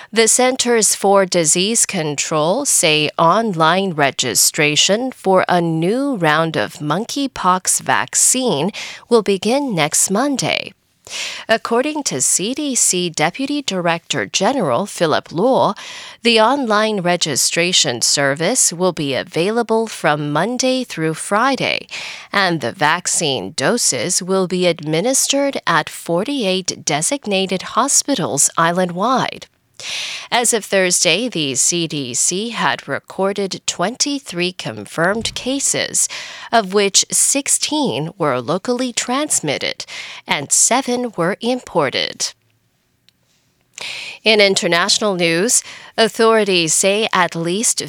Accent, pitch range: American, 170-245 Hz